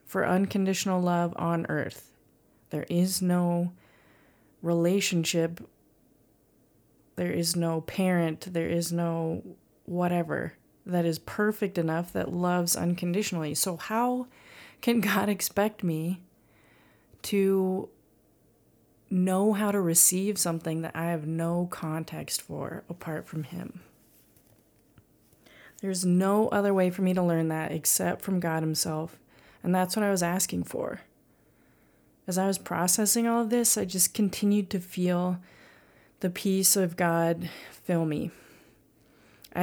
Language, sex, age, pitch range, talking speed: English, female, 30-49, 170-195 Hz, 125 wpm